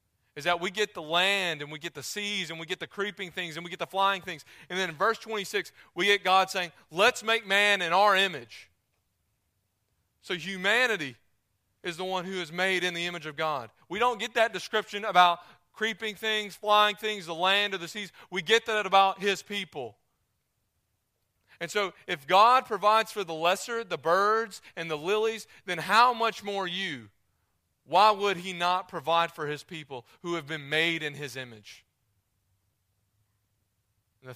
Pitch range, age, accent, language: 120-190 Hz, 30-49, American, English